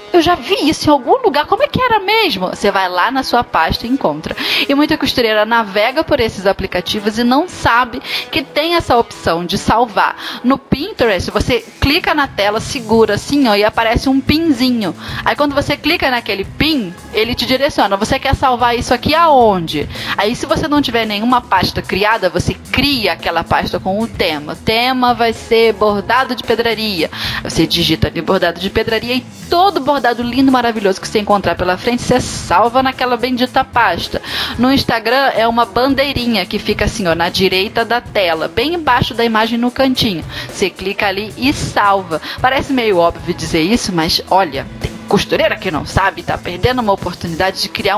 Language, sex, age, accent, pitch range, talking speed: Portuguese, female, 10-29, Brazilian, 200-265 Hz, 185 wpm